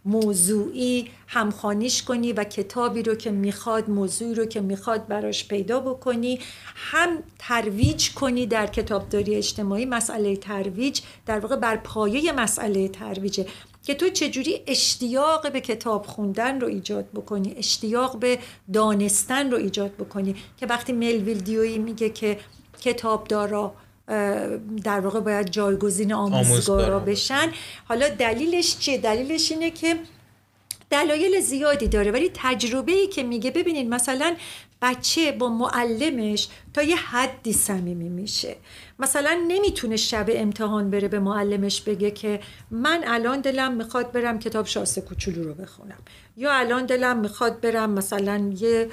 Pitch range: 200-260 Hz